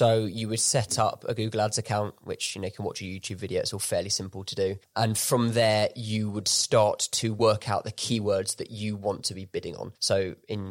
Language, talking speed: English, 245 wpm